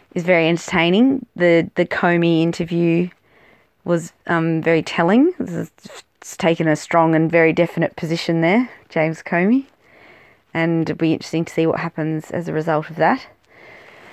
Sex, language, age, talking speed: female, English, 20-39, 150 wpm